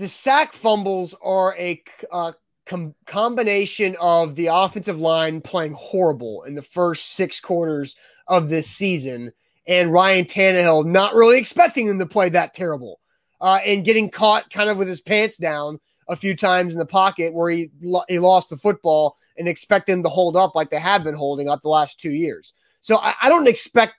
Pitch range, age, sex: 165-205 Hz, 30-49, male